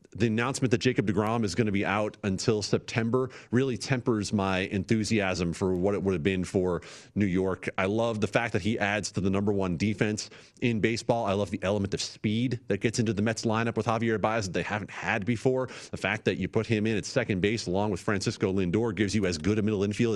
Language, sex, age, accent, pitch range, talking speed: English, male, 30-49, American, 95-120 Hz, 240 wpm